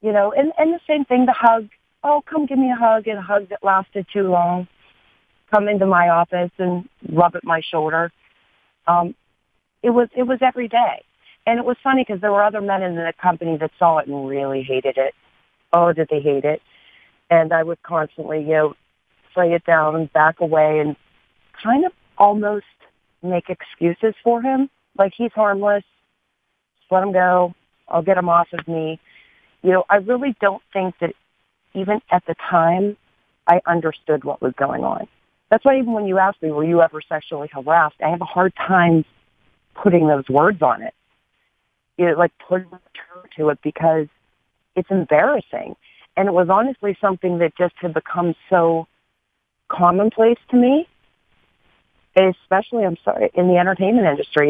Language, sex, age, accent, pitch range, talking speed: English, female, 40-59, American, 165-210 Hz, 180 wpm